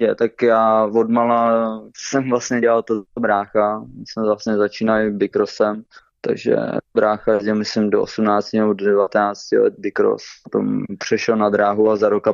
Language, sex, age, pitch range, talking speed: Slovak, male, 20-39, 105-110 Hz, 150 wpm